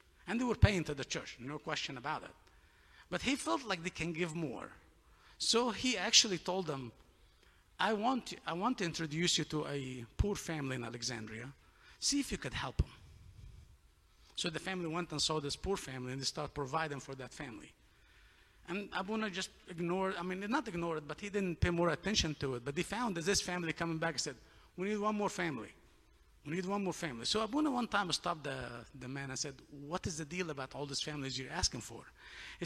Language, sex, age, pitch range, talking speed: English, male, 50-69, 130-200 Hz, 215 wpm